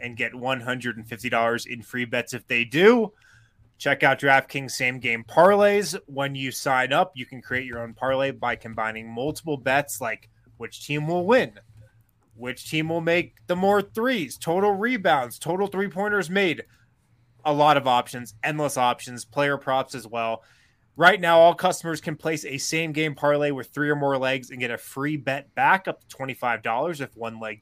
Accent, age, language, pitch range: American, 20-39, English, 115-145 Hz